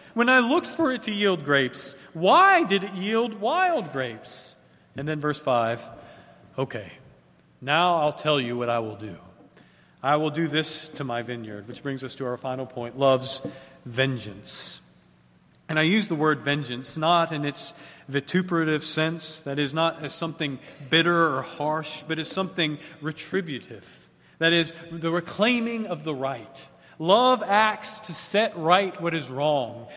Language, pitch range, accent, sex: English, 135-185 Hz, American, male